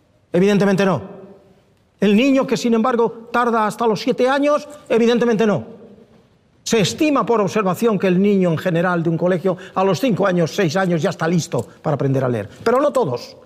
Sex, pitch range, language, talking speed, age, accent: male, 140-210 Hz, Spanish, 185 wpm, 40-59, Spanish